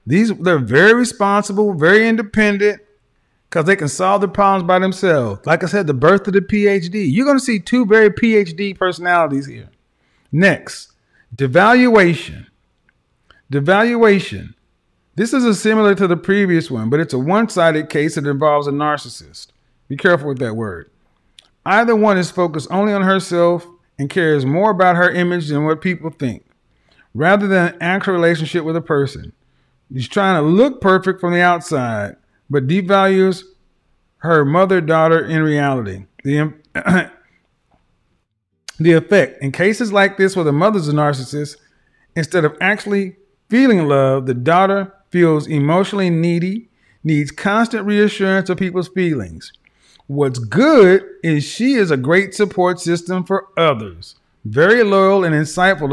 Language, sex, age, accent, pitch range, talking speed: English, male, 40-59, American, 150-200 Hz, 150 wpm